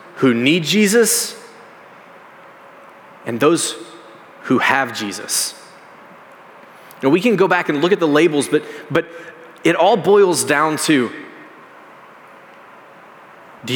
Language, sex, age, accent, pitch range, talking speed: English, male, 30-49, American, 140-195 Hz, 115 wpm